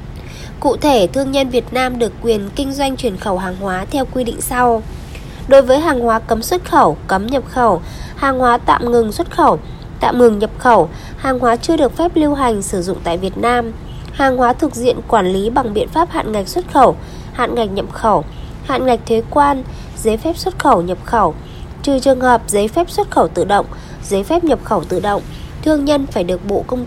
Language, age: Vietnamese, 20-39